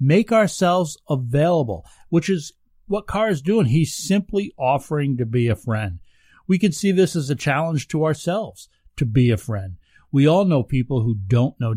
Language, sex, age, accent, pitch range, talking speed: English, male, 50-69, American, 120-160 Hz, 185 wpm